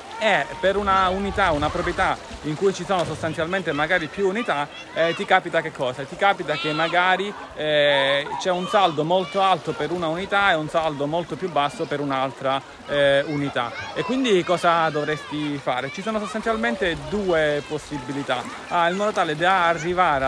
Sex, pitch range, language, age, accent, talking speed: male, 140-175 Hz, Italian, 30-49, native, 165 wpm